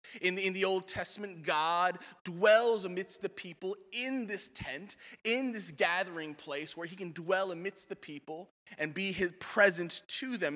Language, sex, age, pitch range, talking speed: English, male, 20-39, 160-195 Hz, 175 wpm